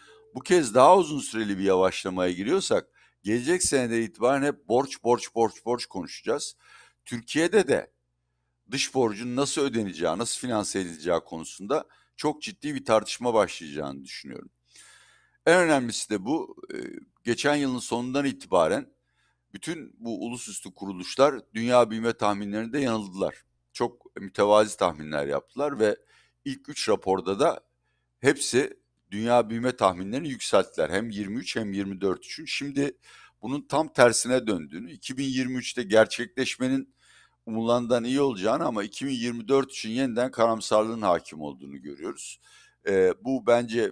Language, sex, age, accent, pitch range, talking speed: Turkish, male, 60-79, native, 95-130 Hz, 120 wpm